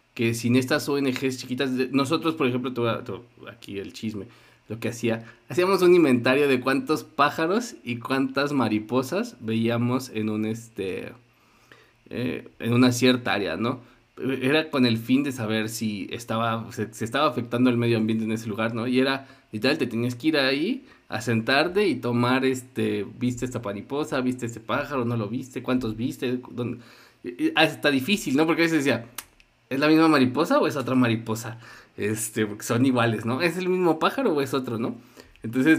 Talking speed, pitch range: 180 wpm, 115-145 Hz